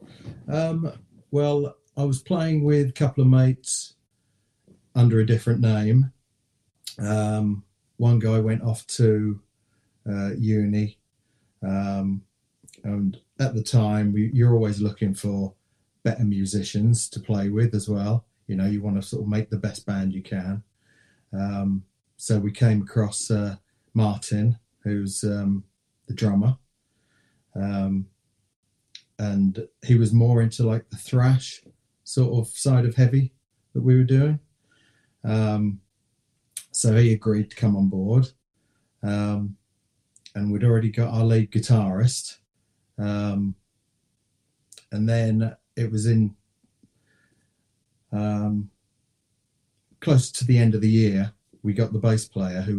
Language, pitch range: English, 100-120 Hz